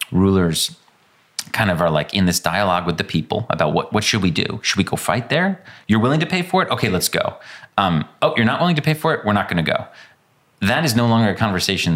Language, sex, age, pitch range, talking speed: English, male, 30-49, 80-110 Hz, 255 wpm